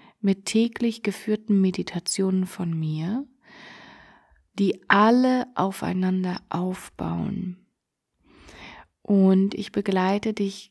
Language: German